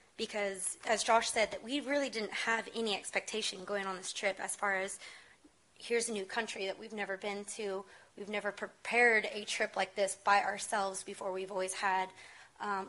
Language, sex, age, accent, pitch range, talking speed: English, female, 20-39, American, 195-235 Hz, 190 wpm